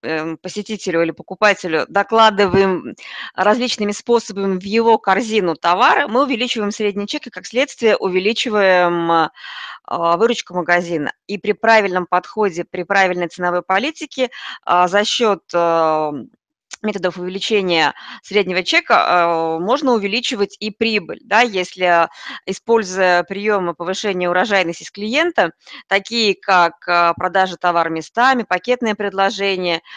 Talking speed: 105 wpm